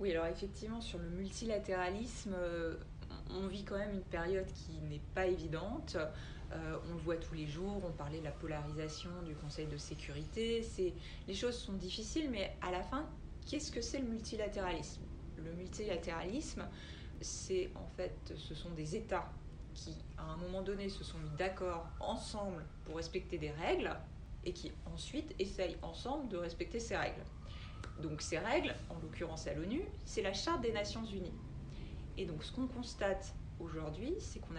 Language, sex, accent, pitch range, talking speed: French, female, French, 165-205 Hz, 170 wpm